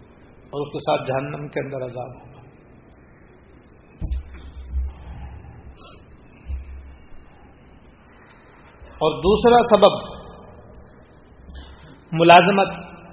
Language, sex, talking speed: Urdu, male, 55 wpm